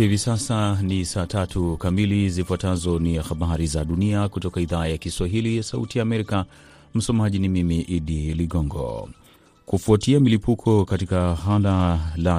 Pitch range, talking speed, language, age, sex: 85-100 Hz, 140 wpm, Swahili, 30-49, male